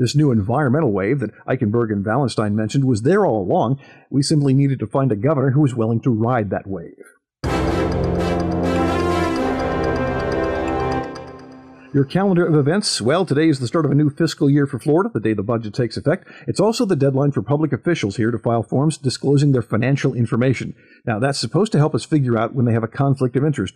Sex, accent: male, American